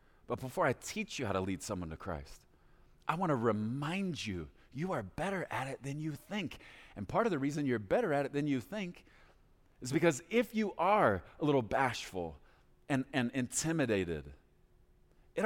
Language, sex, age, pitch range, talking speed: English, male, 30-49, 90-140 Hz, 185 wpm